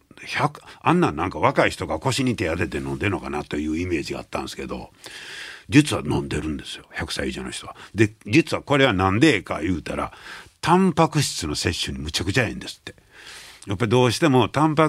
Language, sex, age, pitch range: Japanese, male, 60-79, 100-150 Hz